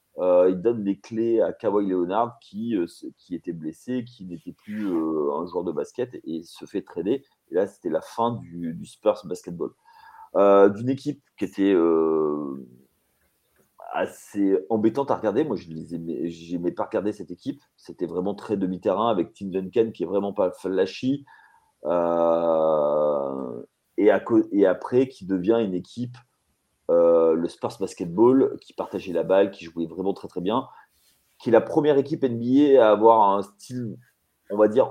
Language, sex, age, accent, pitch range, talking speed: French, male, 30-49, French, 85-125 Hz, 170 wpm